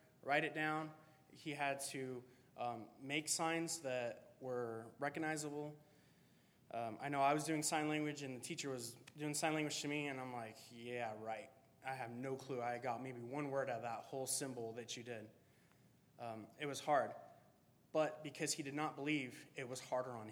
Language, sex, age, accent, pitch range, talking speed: English, male, 20-39, American, 120-145 Hz, 190 wpm